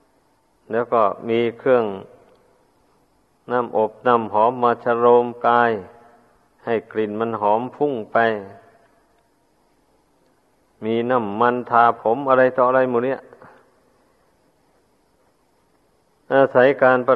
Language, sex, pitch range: Thai, male, 115-130 Hz